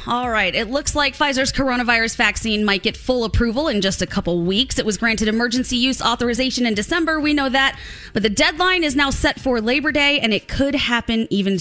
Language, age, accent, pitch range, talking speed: English, 20-39, American, 195-265 Hz, 215 wpm